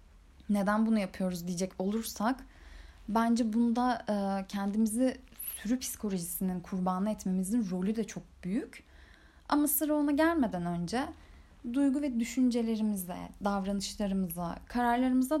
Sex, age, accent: female, 10-29, native